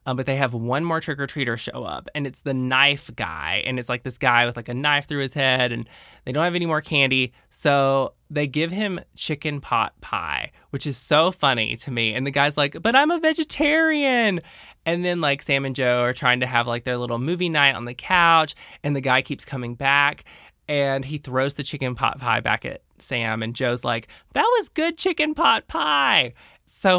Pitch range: 125-160 Hz